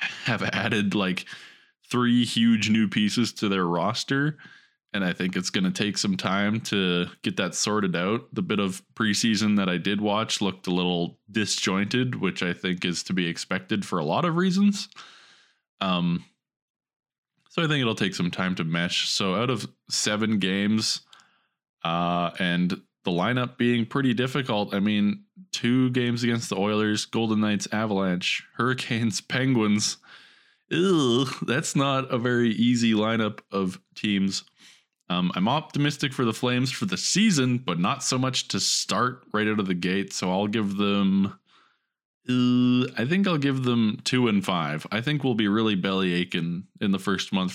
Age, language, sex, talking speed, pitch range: 20-39, English, male, 170 wpm, 95-125 Hz